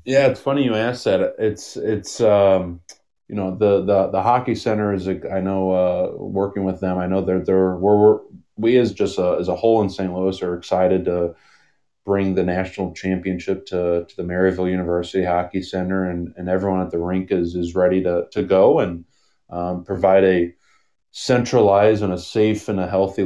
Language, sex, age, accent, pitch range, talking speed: English, male, 20-39, American, 90-100 Hz, 200 wpm